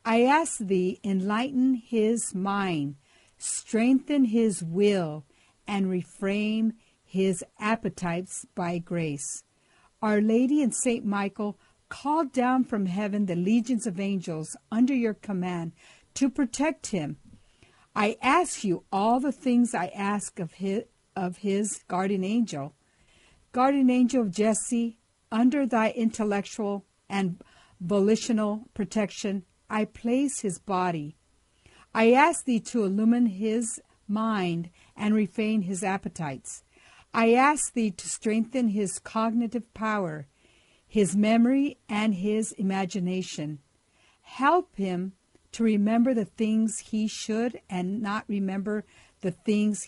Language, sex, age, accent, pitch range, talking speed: English, female, 60-79, American, 190-235 Hz, 120 wpm